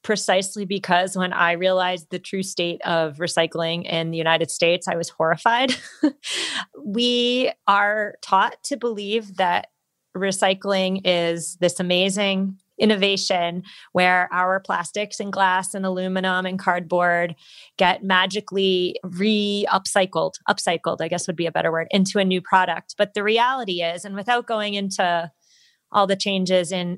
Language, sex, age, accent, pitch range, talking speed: English, female, 30-49, American, 175-205 Hz, 140 wpm